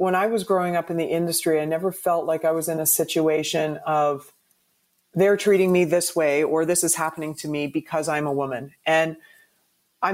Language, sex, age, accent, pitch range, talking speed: English, female, 40-59, American, 155-180 Hz, 205 wpm